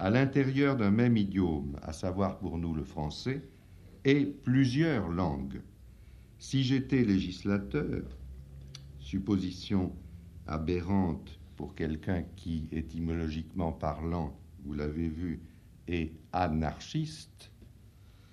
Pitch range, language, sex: 90-130 Hz, French, male